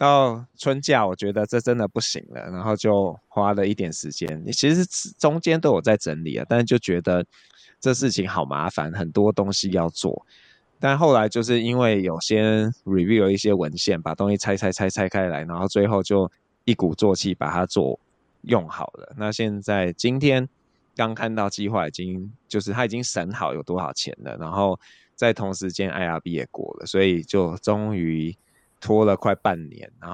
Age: 20-39